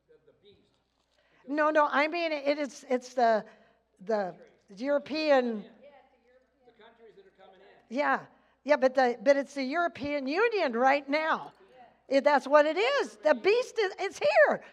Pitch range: 225-295 Hz